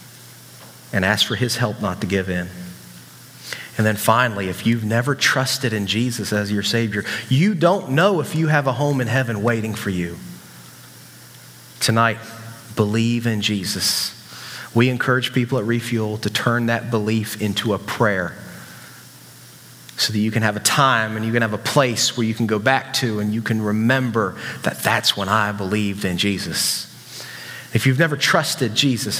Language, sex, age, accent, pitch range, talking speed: English, male, 30-49, American, 110-135 Hz, 175 wpm